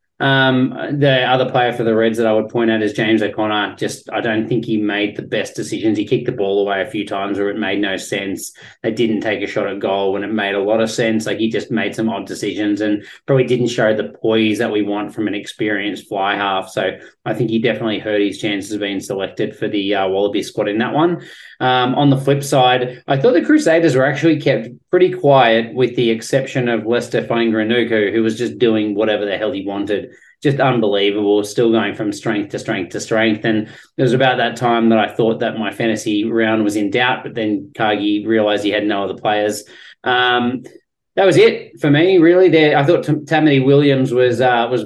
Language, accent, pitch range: English, Australian, 105-130 Hz